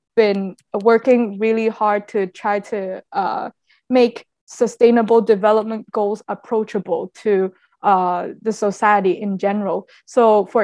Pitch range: 200-230 Hz